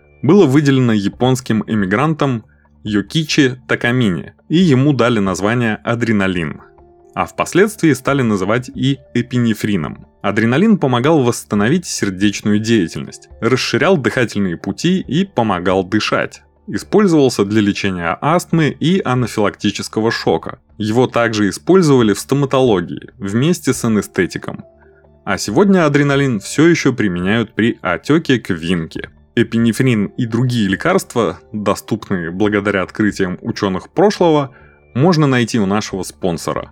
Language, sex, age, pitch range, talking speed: Russian, male, 20-39, 100-140 Hz, 110 wpm